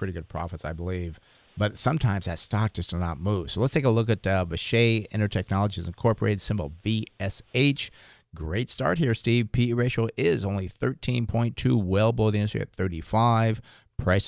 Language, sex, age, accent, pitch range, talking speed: English, male, 50-69, American, 95-120 Hz, 170 wpm